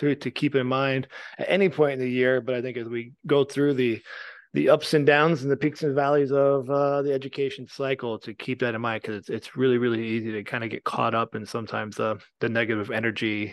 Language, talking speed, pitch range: English, 250 wpm, 115-135 Hz